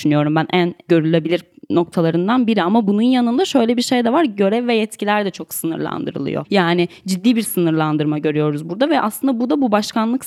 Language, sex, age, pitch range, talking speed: Turkish, female, 10-29, 180-230 Hz, 180 wpm